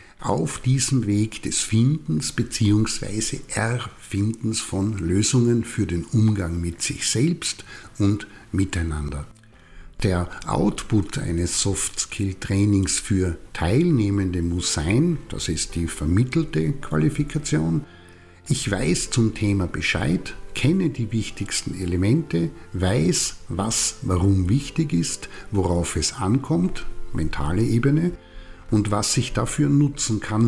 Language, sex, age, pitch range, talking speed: German, male, 60-79, 85-120 Hz, 110 wpm